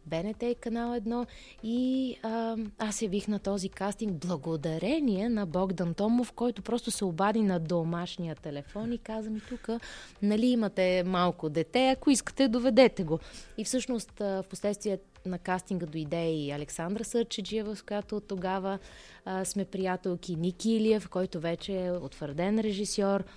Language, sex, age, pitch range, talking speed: Bulgarian, female, 20-39, 175-220 Hz, 145 wpm